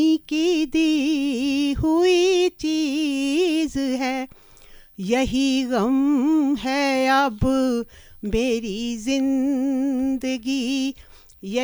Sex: female